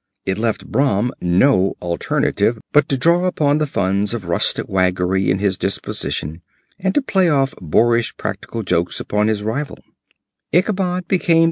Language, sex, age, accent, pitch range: Korean, male, 50-69, American, 110-150 Hz